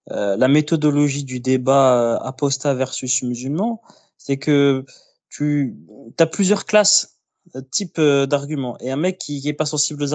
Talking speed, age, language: 170 wpm, 20-39, French